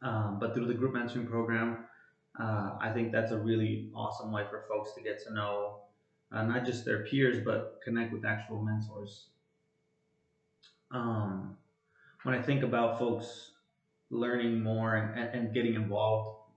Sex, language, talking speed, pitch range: male, English, 155 wpm, 105-120 Hz